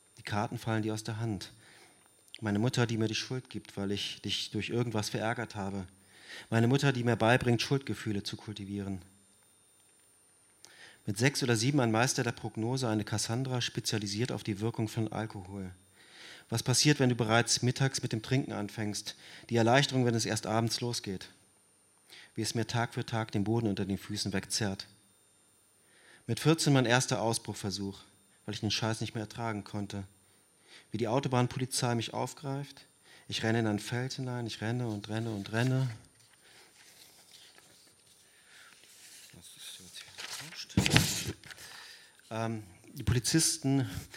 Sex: male